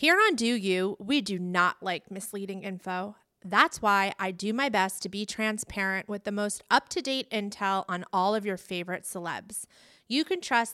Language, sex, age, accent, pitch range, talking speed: English, female, 30-49, American, 190-245 Hz, 185 wpm